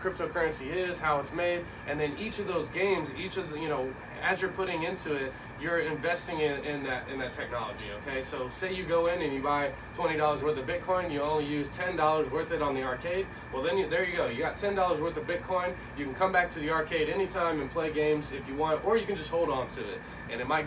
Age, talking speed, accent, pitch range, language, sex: 20-39, 255 wpm, American, 145-175 Hz, English, male